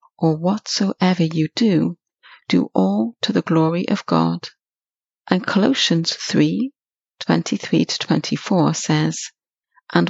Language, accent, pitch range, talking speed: English, British, 160-210 Hz, 125 wpm